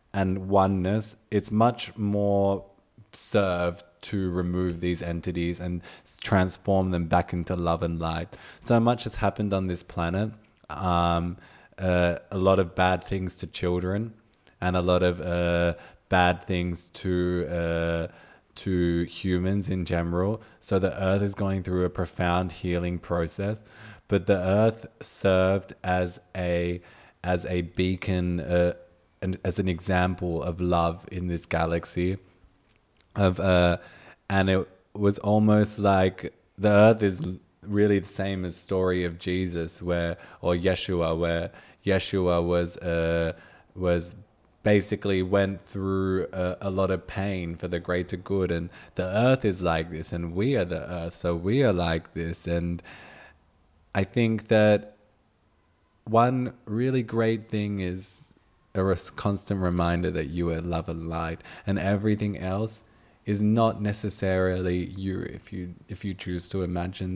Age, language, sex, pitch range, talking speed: 20-39, German, male, 85-100 Hz, 145 wpm